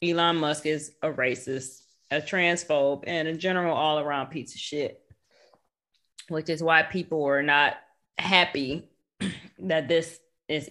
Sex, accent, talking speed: female, American, 135 wpm